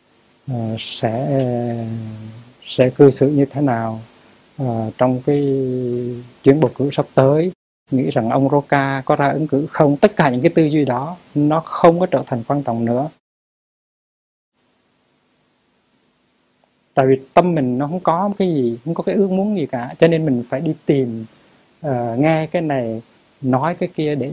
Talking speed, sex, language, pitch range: 175 wpm, male, Vietnamese, 120-155 Hz